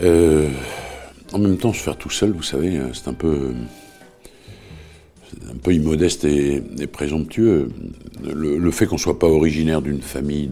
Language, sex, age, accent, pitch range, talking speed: French, male, 60-79, French, 65-85 Hz, 170 wpm